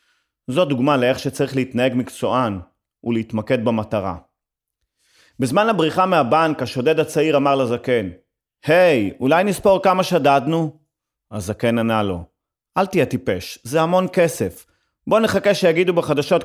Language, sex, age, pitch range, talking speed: Hebrew, male, 30-49, 125-170 Hz, 120 wpm